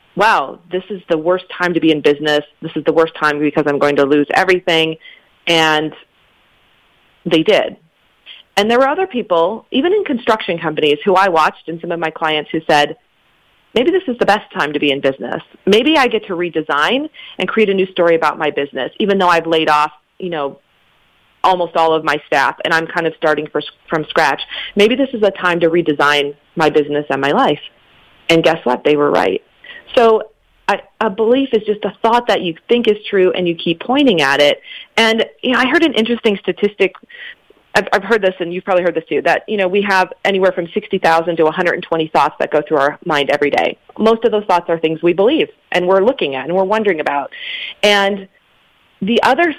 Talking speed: 215 wpm